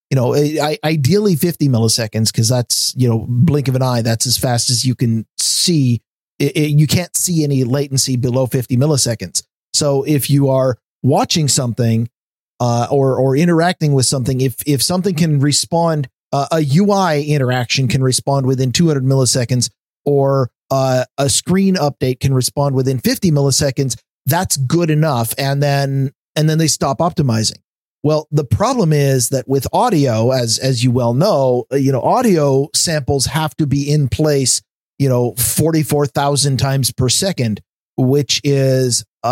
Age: 40-59